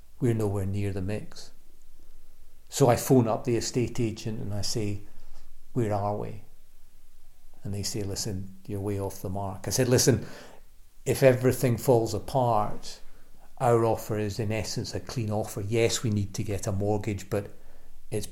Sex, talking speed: male, 165 wpm